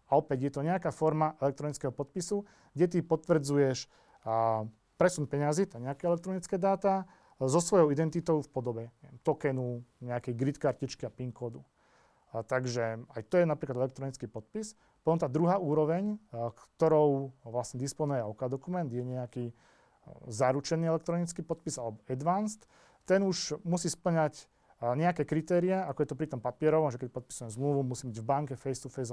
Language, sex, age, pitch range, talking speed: Slovak, male, 40-59, 125-165 Hz, 155 wpm